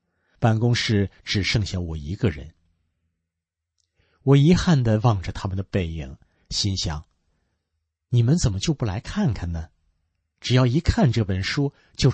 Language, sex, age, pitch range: Chinese, male, 50-69, 90-125 Hz